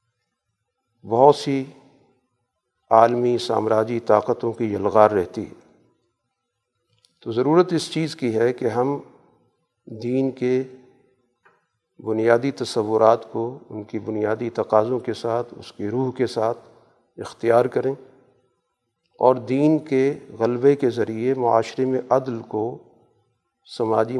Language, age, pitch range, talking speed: Urdu, 50-69, 115-130 Hz, 115 wpm